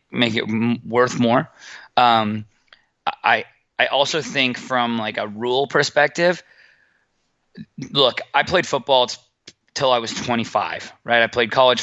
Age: 20-39